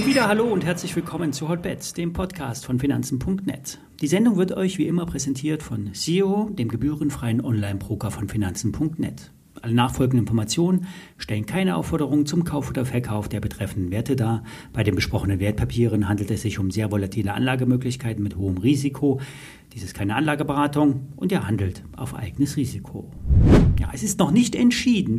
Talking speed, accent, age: 165 wpm, German, 40-59